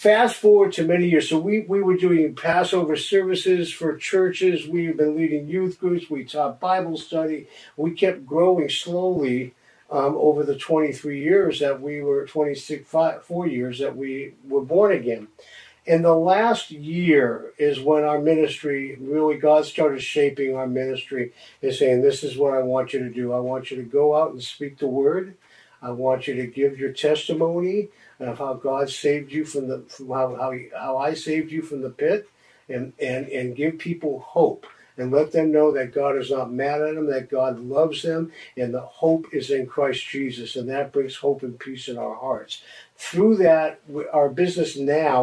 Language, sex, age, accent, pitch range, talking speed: English, male, 50-69, American, 135-165 Hz, 190 wpm